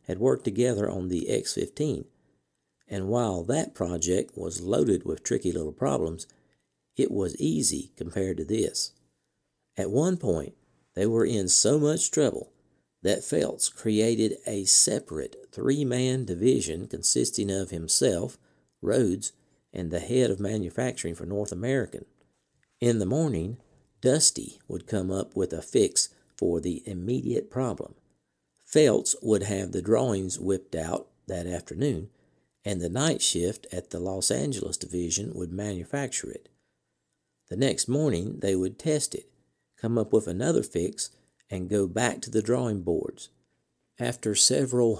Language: English